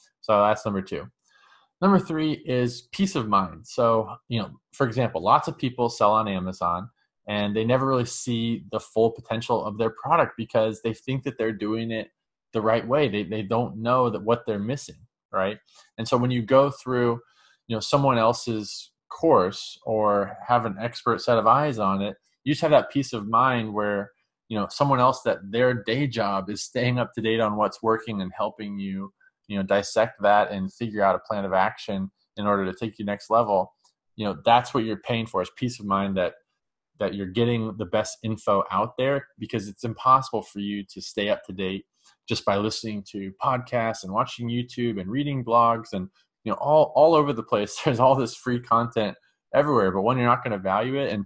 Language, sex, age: English, male, 20-39